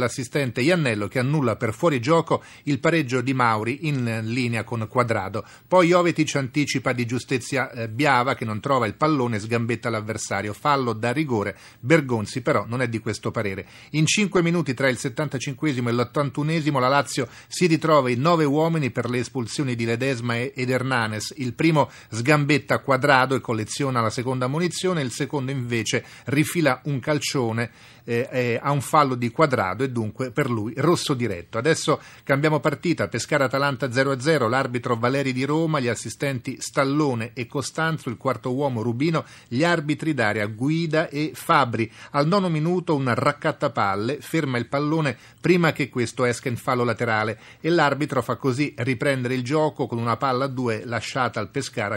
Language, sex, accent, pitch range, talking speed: Italian, male, native, 120-150 Hz, 160 wpm